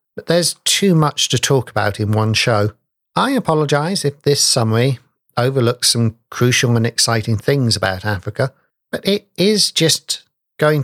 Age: 50-69